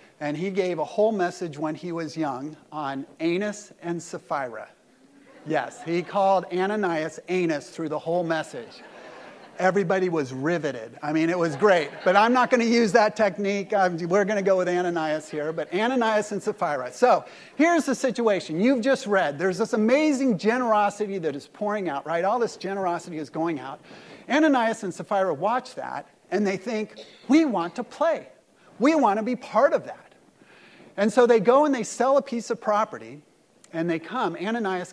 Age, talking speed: 40-59, 185 wpm